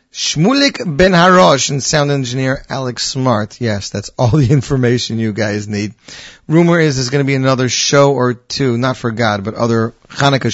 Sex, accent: male, American